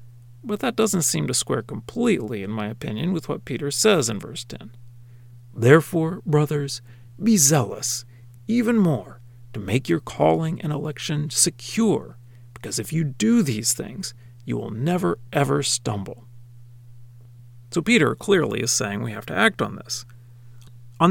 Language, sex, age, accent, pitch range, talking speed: English, male, 40-59, American, 120-165 Hz, 150 wpm